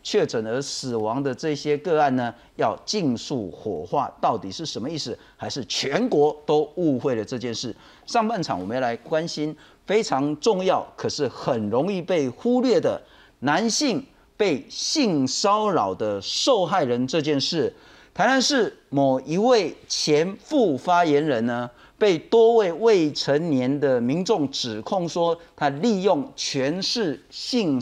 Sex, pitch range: male, 140-220 Hz